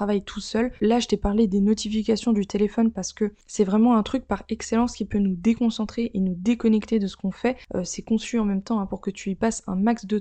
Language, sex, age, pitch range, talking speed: French, female, 20-39, 200-230 Hz, 260 wpm